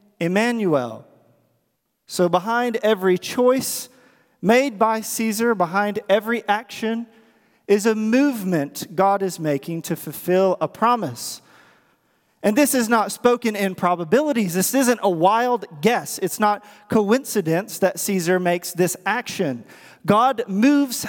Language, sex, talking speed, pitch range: English, male, 120 wpm, 165-245 Hz